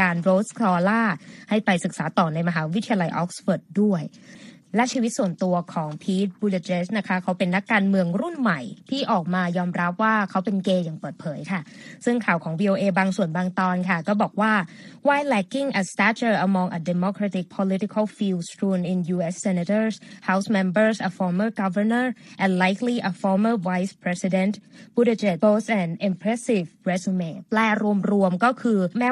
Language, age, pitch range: Thai, 20-39, 185-225 Hz